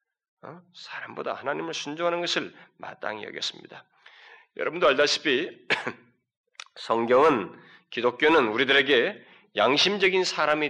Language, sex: Korean, male